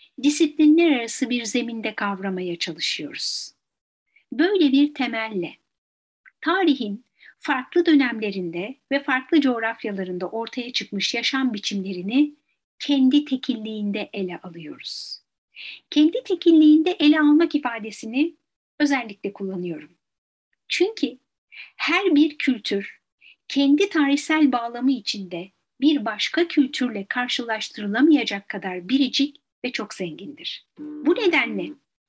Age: 60-79